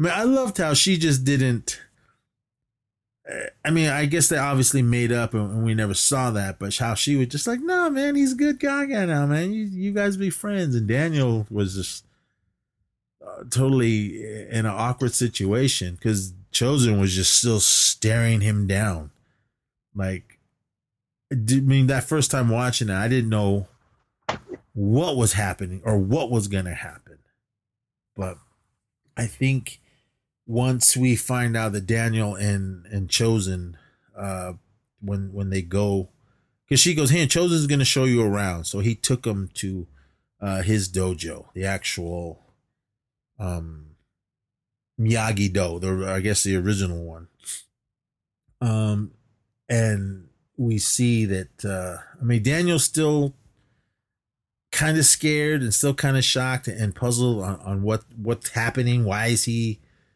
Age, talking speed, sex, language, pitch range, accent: 30-49, 150 wpm, male, English, 100-130 Hz, American